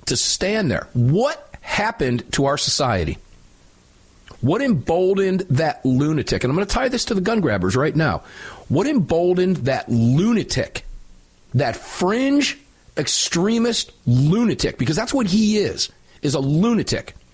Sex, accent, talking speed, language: male, American, 140 wpm, English